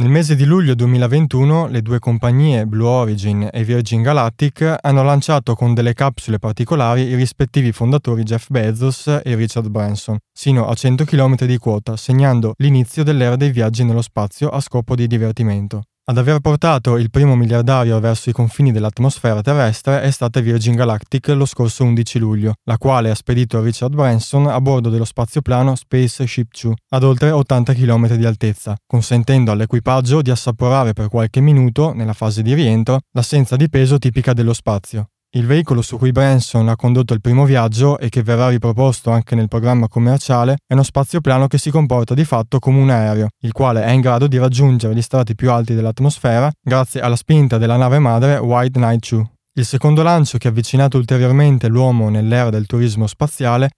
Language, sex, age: Italian, male, 20-39